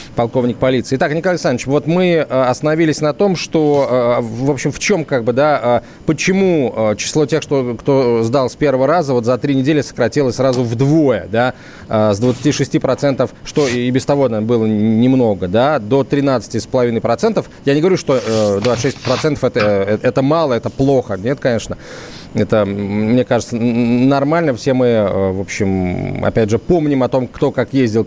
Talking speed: 155 wpm